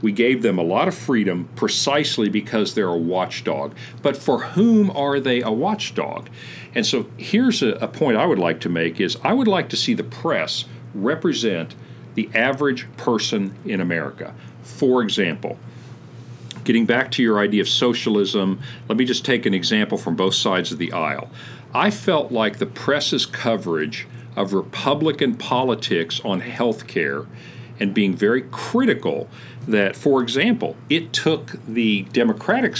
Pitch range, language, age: 105-140 Hz, English, 50-69